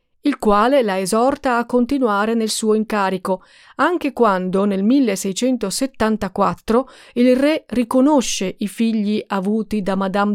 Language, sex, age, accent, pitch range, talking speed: Italian, female, 40-59, native, 195-255 Hz, 120 wpm